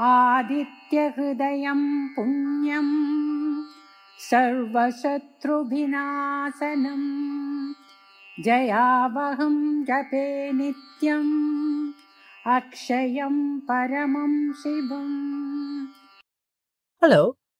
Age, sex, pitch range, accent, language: 50-69, female, 180-285 Hz, Indian, English